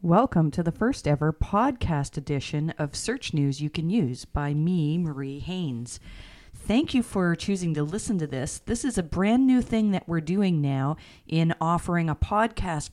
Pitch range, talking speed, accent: 155-195 Hz, 180 wpm, American